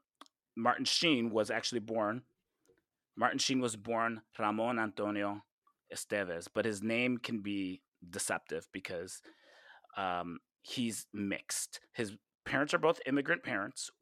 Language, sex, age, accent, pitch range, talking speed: English, male, 30-49, American, 100-125 Hz, 120 wpm